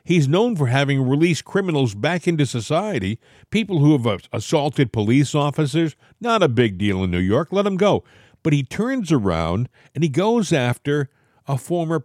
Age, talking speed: 50-69, 180 wpm